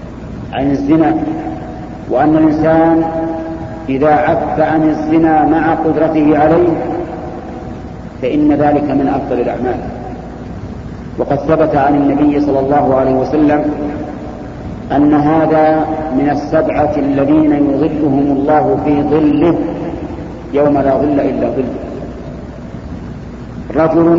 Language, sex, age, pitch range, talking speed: Arabic, male, 50-69, 145-160 Hz, 95 wpm